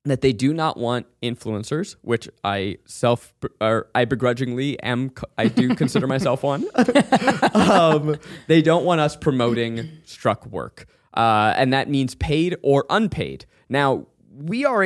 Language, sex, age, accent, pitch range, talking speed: English, male, 20-39, American, 120-160 Hz, 150 wpm